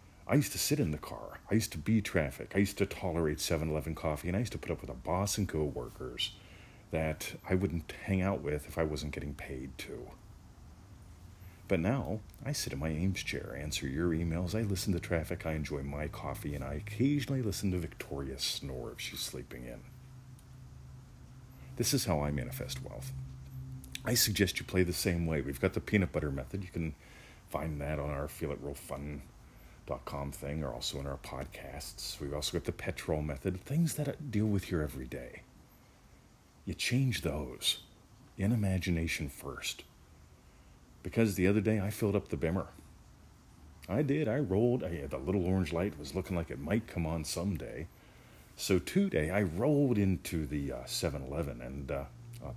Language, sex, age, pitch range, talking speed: English, male, 40-59, 75-100 Hz, 190 wpm